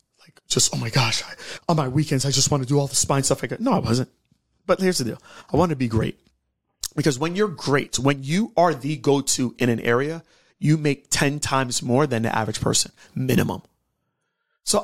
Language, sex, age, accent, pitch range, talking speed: English, male, 30-49, American, 125-165 Hz, 215 wpm